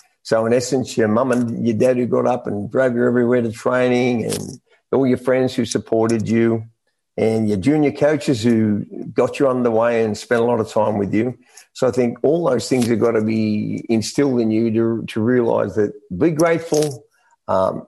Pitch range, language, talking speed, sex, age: 110-130 Hz, English, 210 wpm, male, 50-69